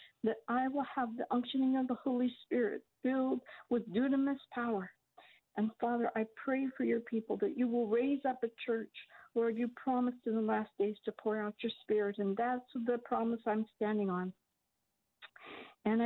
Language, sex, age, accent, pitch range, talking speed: English, female, 60-79, American, 215-245 Hz, 180 wpm